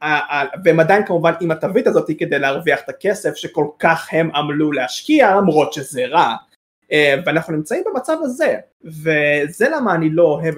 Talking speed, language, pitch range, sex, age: 145 wpm, Hebrew, 155-230 Hz, male, 20-39